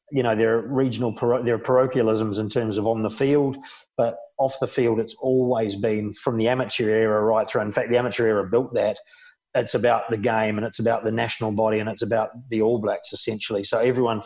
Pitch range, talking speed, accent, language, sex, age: 110-125 Hz, 225 wpm, Australian, English, male, 40-59